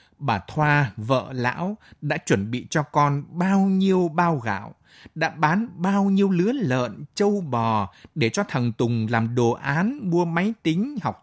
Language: Vietnamese